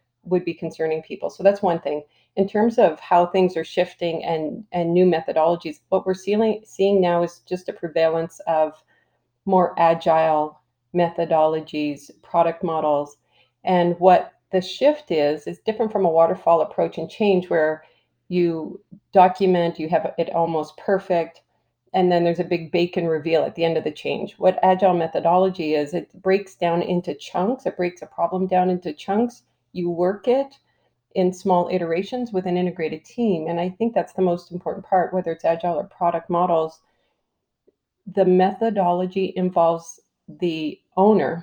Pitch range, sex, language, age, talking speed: 165-185 Hz, female, English, 40-59, 160 wpm